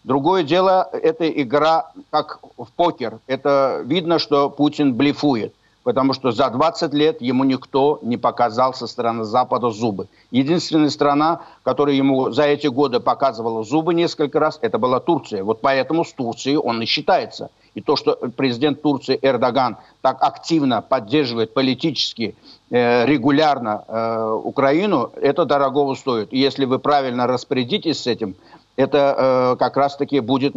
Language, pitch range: Ukrainian, 130-150 Hz